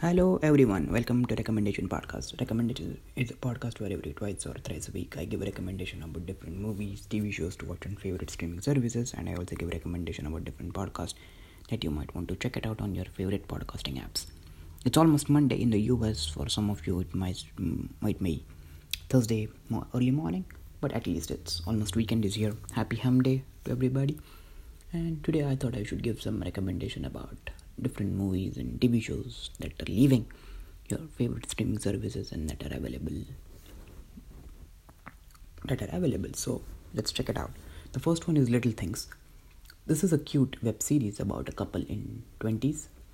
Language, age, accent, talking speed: English, 20-39, Indian, 190 wpm